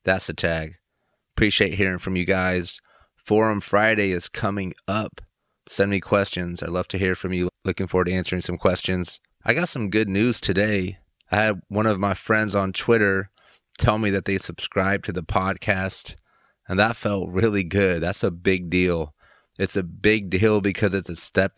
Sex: male